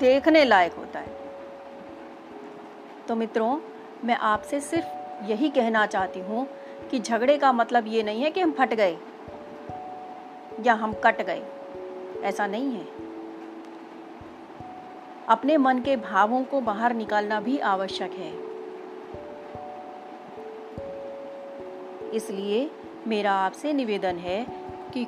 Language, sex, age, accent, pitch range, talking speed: Hindi, female, 30-49, native, 195-280 Hz, 85 wpm